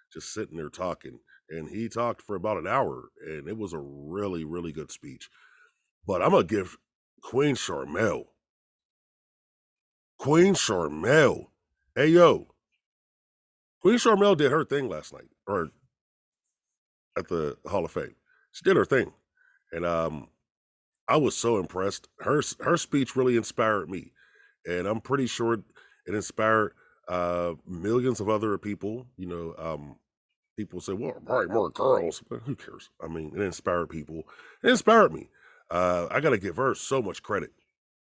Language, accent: English, American